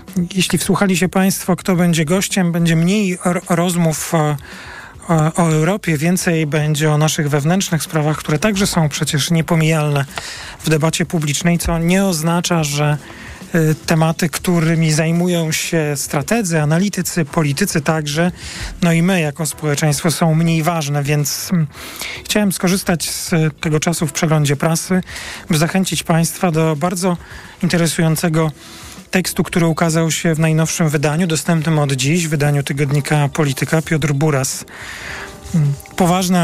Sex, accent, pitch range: male, native, 155-180 Hz